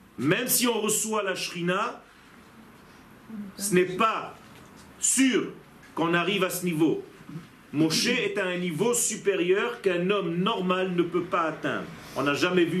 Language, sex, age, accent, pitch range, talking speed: French, male, 40-59, French, 175-230 Hz, 150 wpm